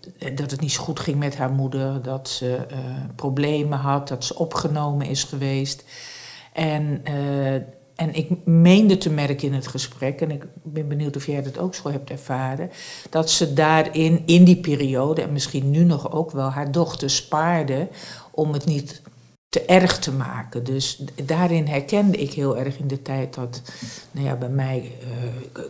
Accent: Dutch